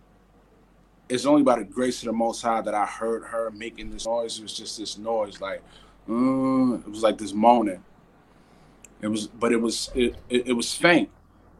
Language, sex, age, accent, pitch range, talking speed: English, male, 20-39, American, 105-125 Hz, 195 wpm